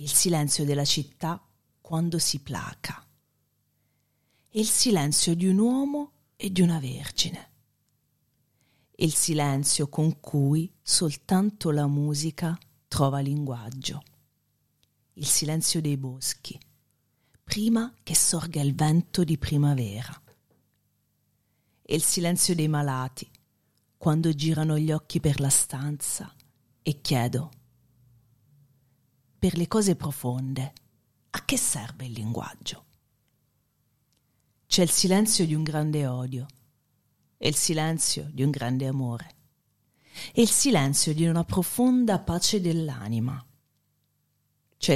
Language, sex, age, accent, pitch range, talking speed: Italian, female, 40-59, native, 130-160 Hz, 110 wpm